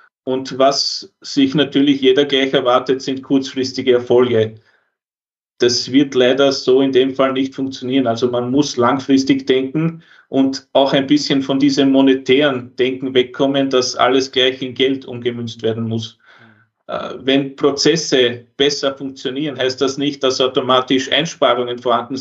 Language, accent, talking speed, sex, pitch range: German, Austrian, 140 wpm, male, 125-135 Hz